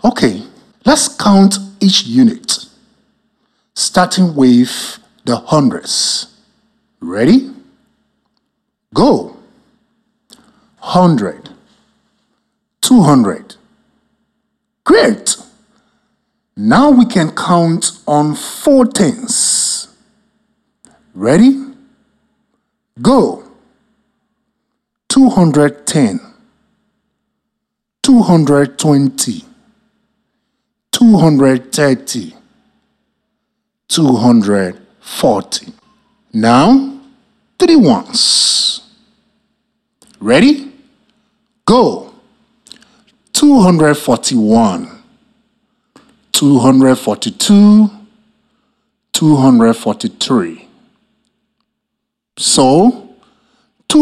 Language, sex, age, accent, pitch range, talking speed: English, male, 50-69, Nigerian, 215-240 Hz, 45 wpm